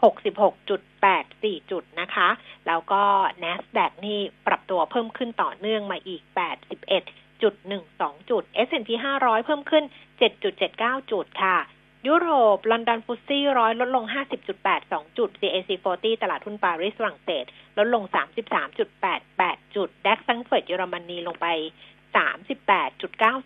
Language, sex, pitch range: Thai, female, 190-255 Hz